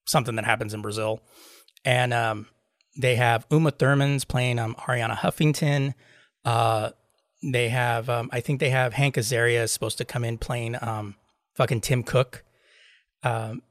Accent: American